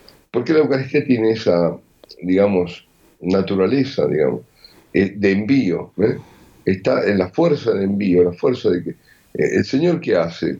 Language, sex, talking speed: Spanish, male, 145 wpm